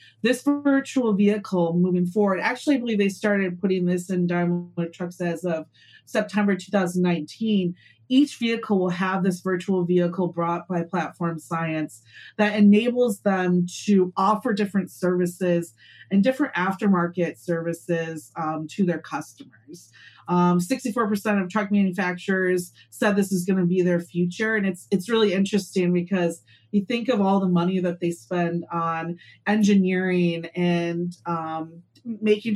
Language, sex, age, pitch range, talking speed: English, female, 30-49, 170-205 Hz, 145 wpm